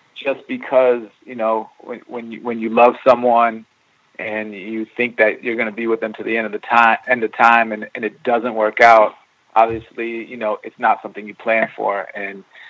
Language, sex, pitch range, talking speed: English, male, 110-125 Hz, 215 wpm